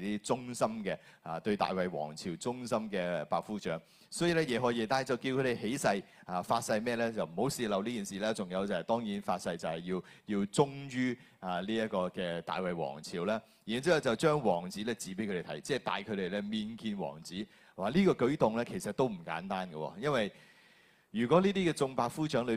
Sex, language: male, Chinese